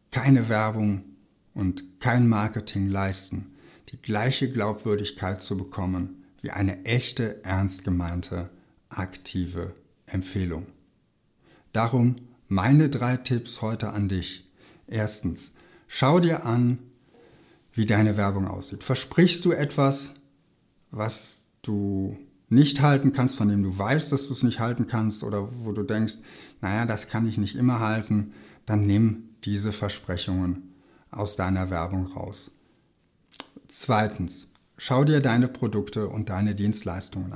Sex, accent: male, German